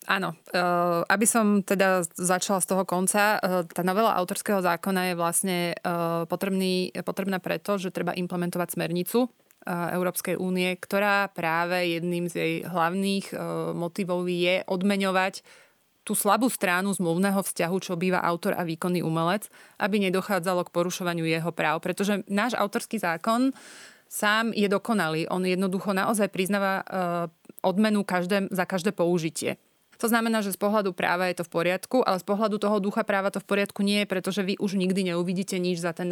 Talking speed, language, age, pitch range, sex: 165 wpm, Slovak, 30-49, 175-200 Hz, female